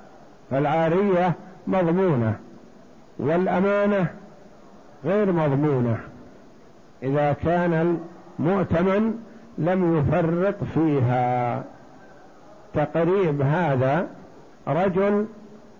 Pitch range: 140-185 Hz